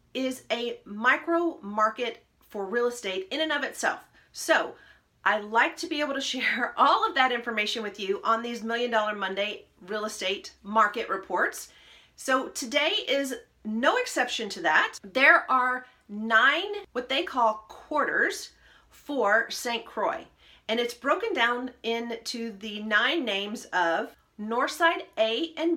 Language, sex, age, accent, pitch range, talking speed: English, female, 40-59, American, 215-305 Hz, 145 wpm